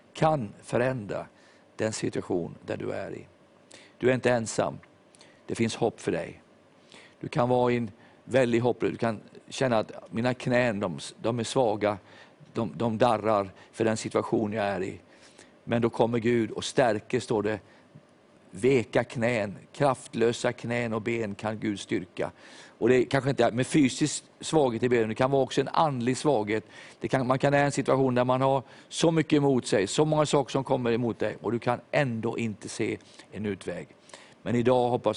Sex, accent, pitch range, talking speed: male, Swedish, 110-130 Hz, 185 wpm